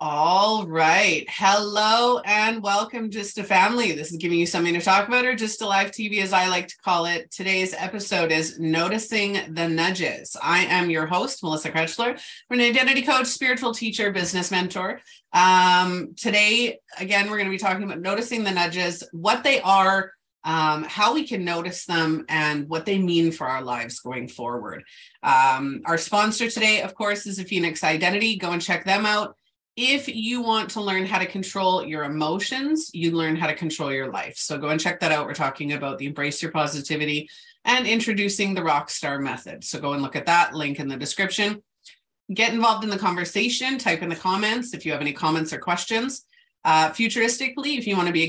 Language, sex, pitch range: English, female, 165-220 Hz